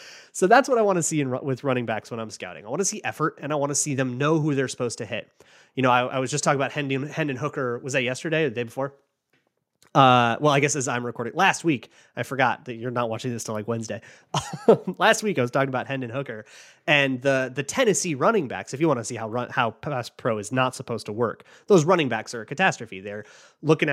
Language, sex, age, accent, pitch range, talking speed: English, male, 30-49, American, 125-160 Hz, 260 wpm